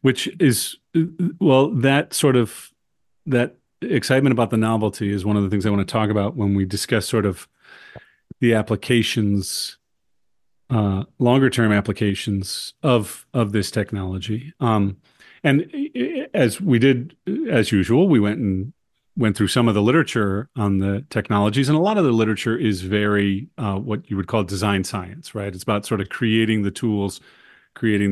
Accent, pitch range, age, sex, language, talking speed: American, 100-120 Hz, 40-59, male, English, 170 wpm